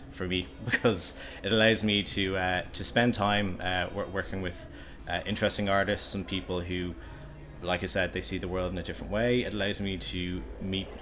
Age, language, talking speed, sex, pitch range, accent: 20-39, English, 200 wpm, male, 85-100 Hz, Irish